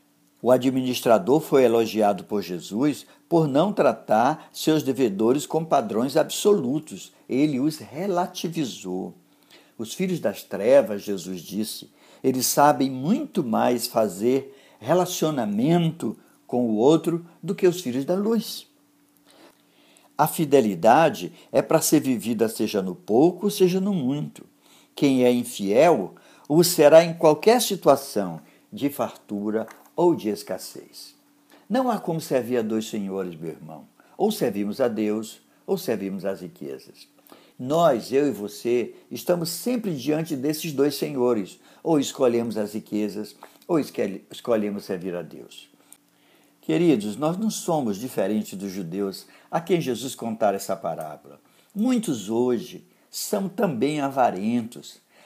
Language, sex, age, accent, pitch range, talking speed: Portuguese, male, 60-79, Brazilian, 105-175 Hz, 130 wpm